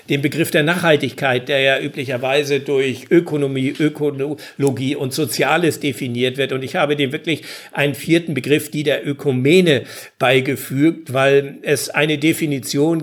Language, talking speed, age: German, 140 wpm, 60-79